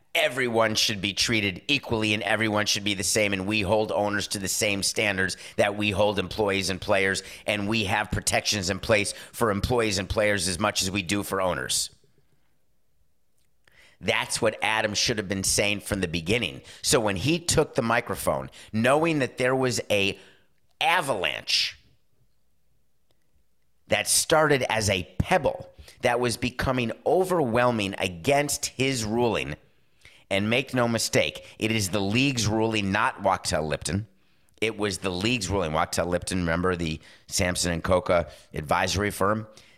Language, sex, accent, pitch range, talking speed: English, male, American, 90-110 Hz, 155 wpm